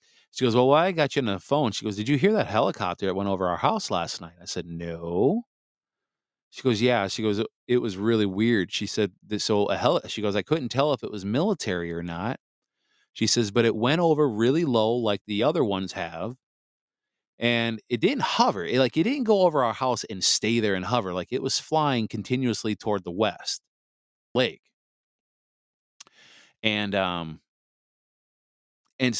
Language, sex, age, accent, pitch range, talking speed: English, male, 30-49, American, 95-125 Hz, 195 wpm